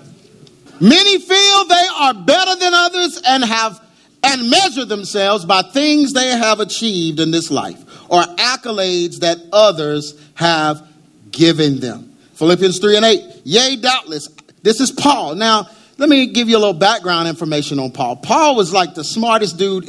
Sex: male